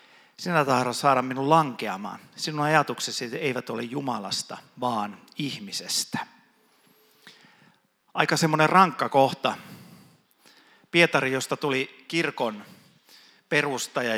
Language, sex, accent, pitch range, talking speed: Finnish, male, native, 120-150 Hz, 90 wpm